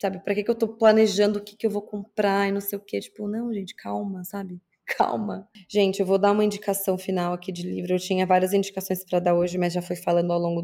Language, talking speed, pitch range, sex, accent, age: Portuguese, 265 wpm, 180-205 Hz, female, Brazilian, 20-39